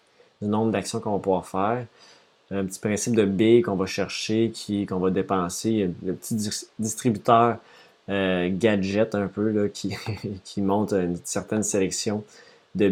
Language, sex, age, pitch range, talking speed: French, male, 20-39, 95-110 Hz, 160 wpm